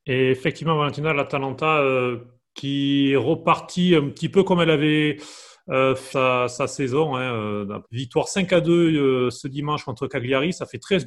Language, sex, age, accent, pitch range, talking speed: French, male, 30-49, French, 125-165 Hz, 170 wpm